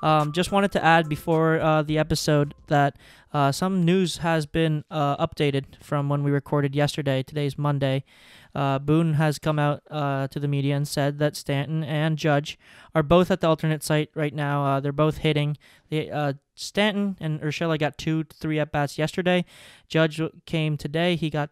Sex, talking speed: male, 185 wpm